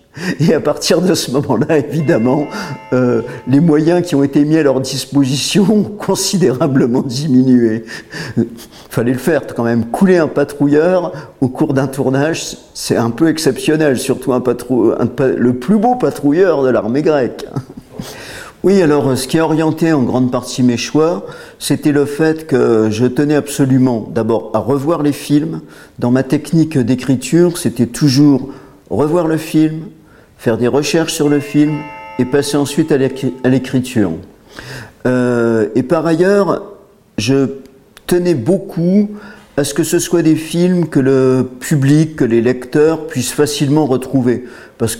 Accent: French